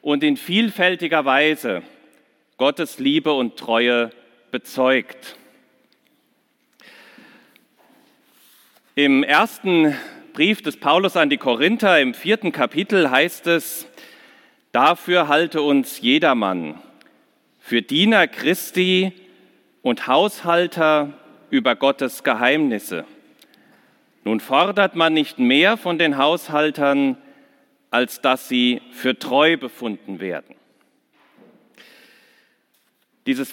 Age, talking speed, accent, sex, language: 50-69, 90 wpm, German, male, German